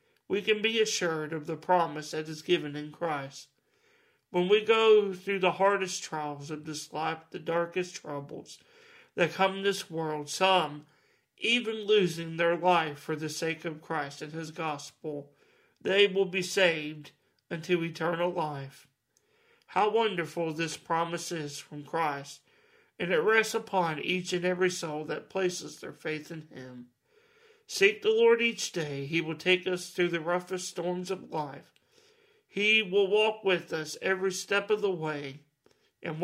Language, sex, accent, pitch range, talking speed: English, male, American, 155-200 Hz, 160 wpm